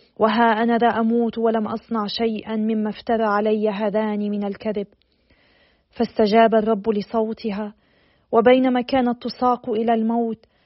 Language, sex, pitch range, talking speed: Arabic, female, 220-250 Hz, 115 wpm